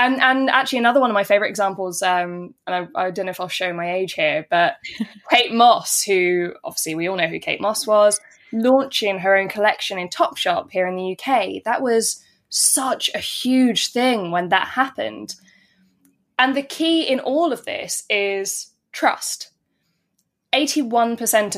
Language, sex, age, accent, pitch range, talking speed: English, female, 10-29, British, 185-240 Hz, 170 wpm